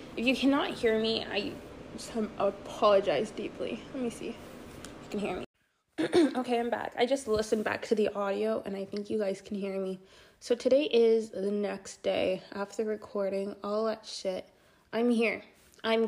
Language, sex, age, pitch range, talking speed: English, female, 20-39, 195-235 Hz, 185 wpm